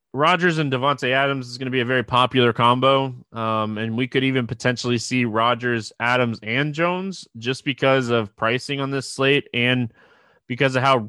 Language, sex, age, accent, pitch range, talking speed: English, male, 20-39, American, 115-135 Hz, 185 wpm